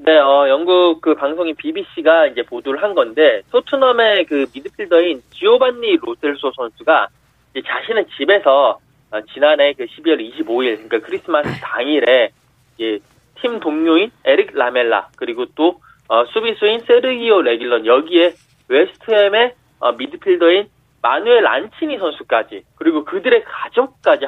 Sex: male